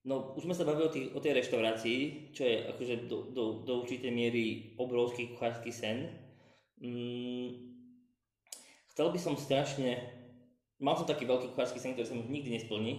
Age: 20-39